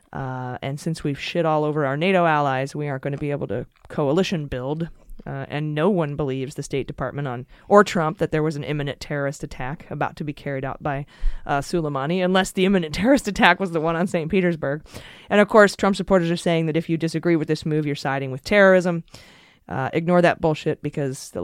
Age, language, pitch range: 20-39, English, 145-180 Hz